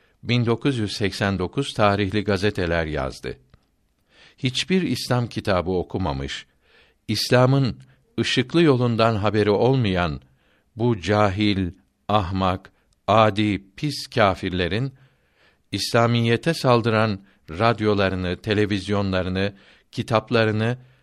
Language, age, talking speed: Turkish, 60-79, 70 wpm